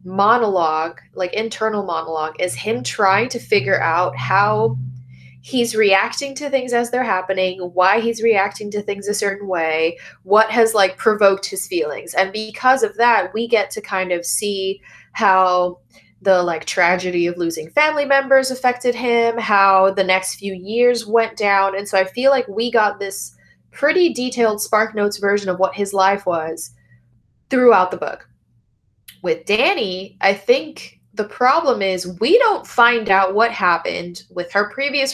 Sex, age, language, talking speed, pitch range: female, 20-39, English, 165 wpm, 185-240 Hz